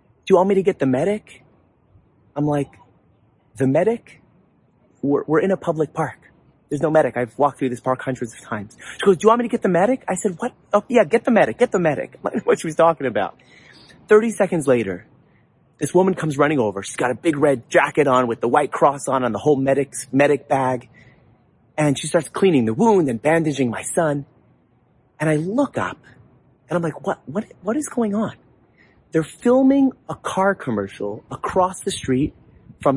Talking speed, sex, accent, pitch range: 210 wpm, male, American, 130-210 Hz